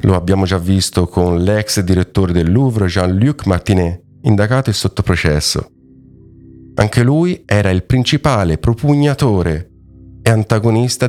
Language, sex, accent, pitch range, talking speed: Italian, male, native, 90-120 Hz, 130 wpm